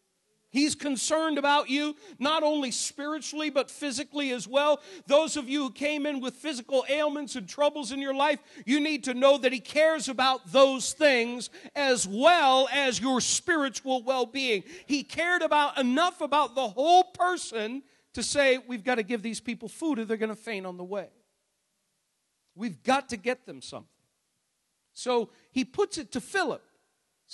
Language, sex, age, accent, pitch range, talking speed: English, male, 50-69, American, 240-290 Hz, 175 wpm